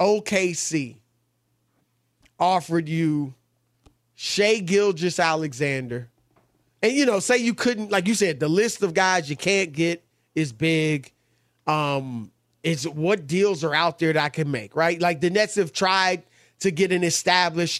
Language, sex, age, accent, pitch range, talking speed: English, male, 30-49, American, 125-205 Hz, 150 wpm